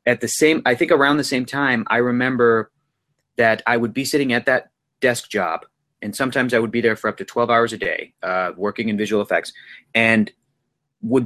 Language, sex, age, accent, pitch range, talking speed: English, male, 30-49, American, 110-130 Hz, 215 wpm